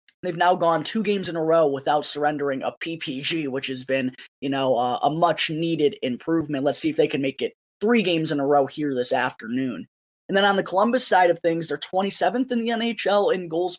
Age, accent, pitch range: 20-39, American, 145-185 Hz